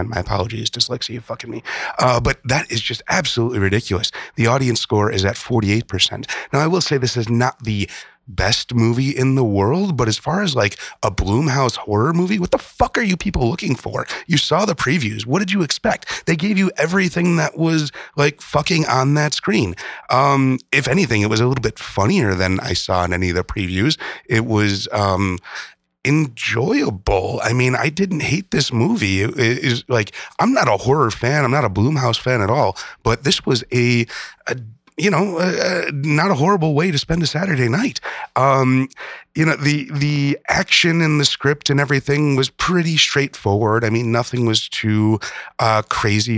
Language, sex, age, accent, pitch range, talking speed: English, male, 30-49, American, 105-145 Hz, 195 wpm